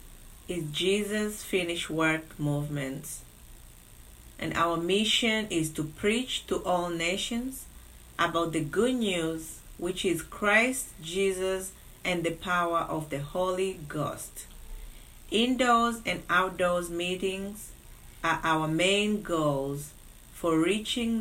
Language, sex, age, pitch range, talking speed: English, female, 30-49, 155-200 Hz, 110 wpm